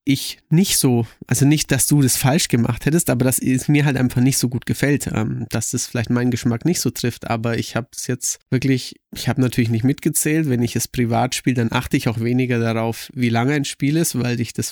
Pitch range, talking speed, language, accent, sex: 120-145 Hz, 240 wpm, German, German, male